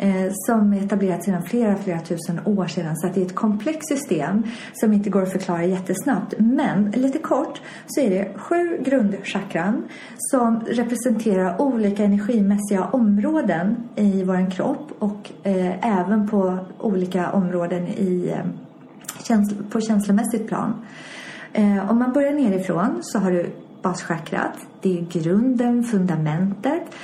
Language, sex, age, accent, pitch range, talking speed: English, female, 30-49, Swedish, 185-240 Hz, 135 wpm